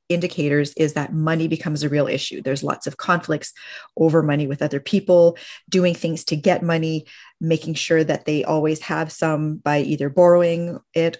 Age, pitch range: 30-49, 150-170 Hz